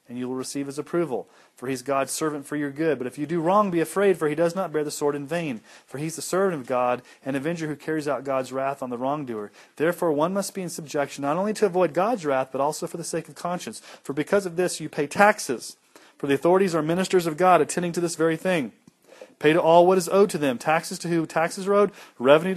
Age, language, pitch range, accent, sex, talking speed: 30-49, English, 145-185 Hz, American, male, 265 wpm